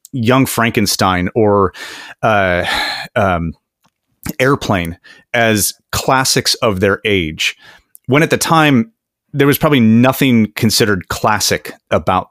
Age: 30-49